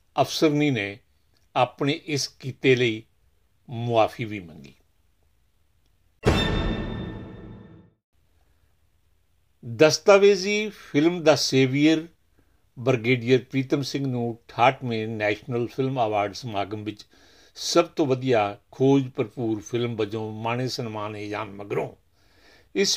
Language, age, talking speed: Punjabi, 60-79, 85 wpm